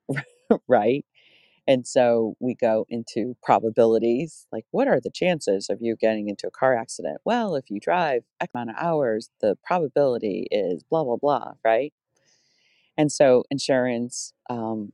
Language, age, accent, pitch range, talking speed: English, 40-59, American, 115-130 Hz, 155 wpm